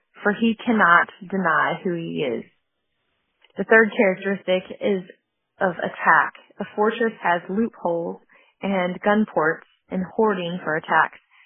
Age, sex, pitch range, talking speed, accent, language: 30-49, female, 175-215 Hz, 125 wpm, American, English